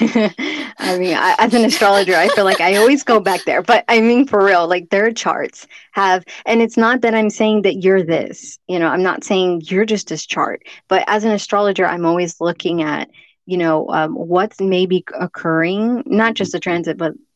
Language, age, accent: English, 20-39, American